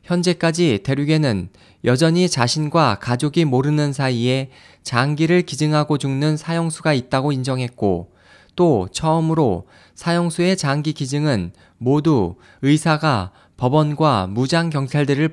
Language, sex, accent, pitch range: Korean, male, native, 115-155 Hz